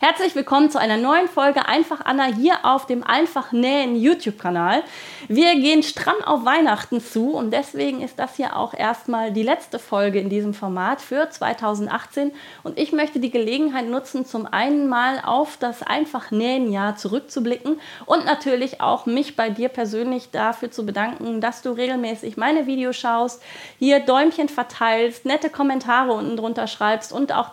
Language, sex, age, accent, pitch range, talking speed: German, female, 30-49, German, 225-280 Hz, 165 wpm